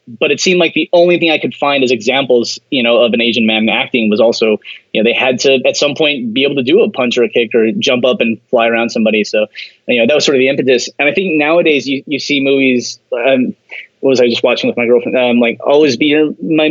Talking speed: 275 wpm